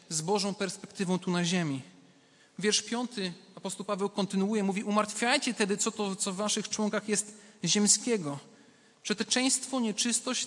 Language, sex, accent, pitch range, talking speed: Polish, male, native, 160-210 Hz, 140 wpm